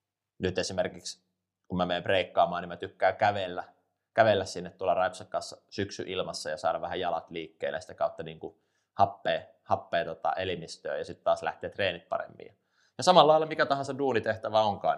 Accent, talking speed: native, 170 wpm